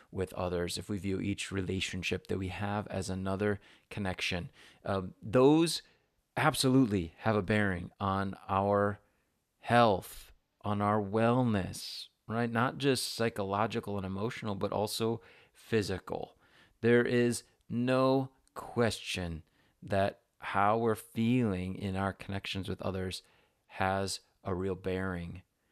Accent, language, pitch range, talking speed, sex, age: American, English, 95-115 Hz, 120 wpm, male, 30-49